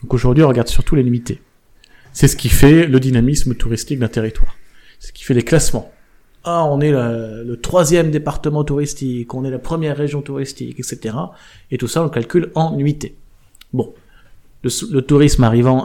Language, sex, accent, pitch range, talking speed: French, male, French, 115-150 Hz, 190 wpm